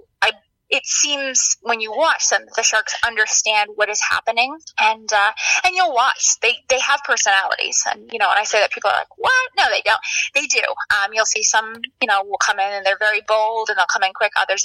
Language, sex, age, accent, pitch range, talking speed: English, female, 20-39, American, 205-275 Hz, 235 wpm